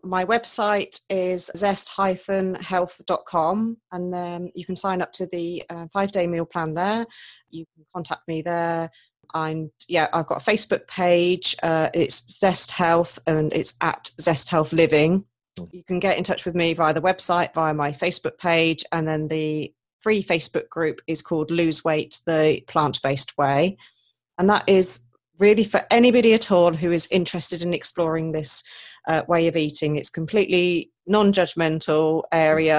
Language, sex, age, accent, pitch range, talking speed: English, female, 40-59, British, 160-180 Hz, 155 wpm